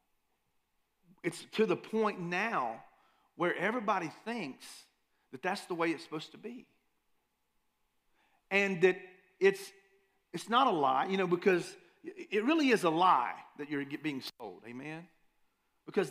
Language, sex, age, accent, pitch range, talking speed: English, male, 40-59, American, 160-210 Hz, 140 wpm